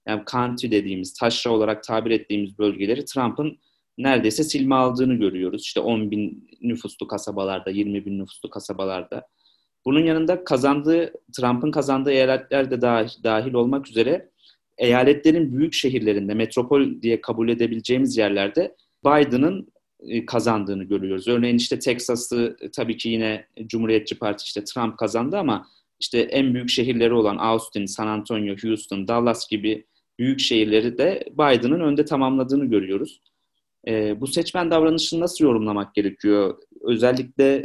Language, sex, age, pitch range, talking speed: Turkish, male, 30-49, 105-130 Hz, 130 wpm